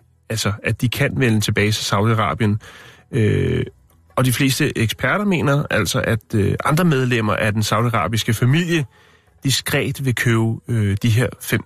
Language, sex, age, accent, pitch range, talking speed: Danish, male, 30-49, native, 110-155 Hz, 155 wpm